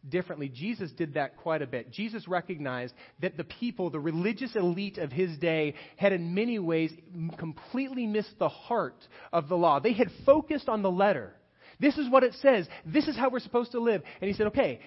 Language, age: English, 30-49